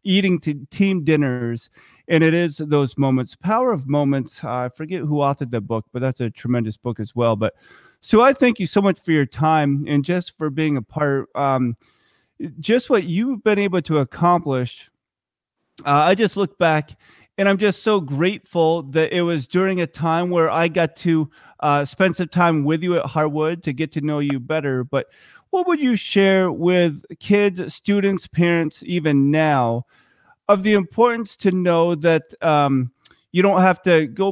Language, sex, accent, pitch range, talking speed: English, male, American, 145-190 Hz, 185 wpm